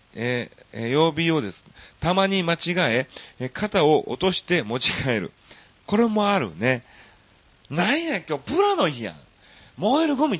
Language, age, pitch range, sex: Japanese, 40-59, 110-180 Hz, male